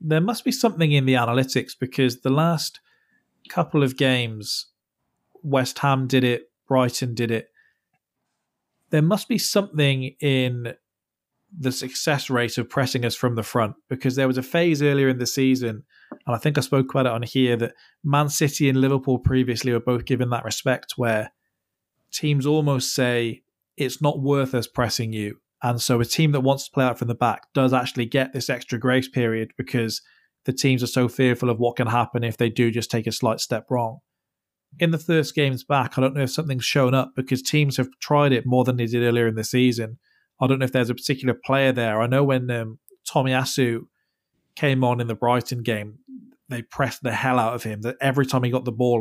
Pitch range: 120-140 Hz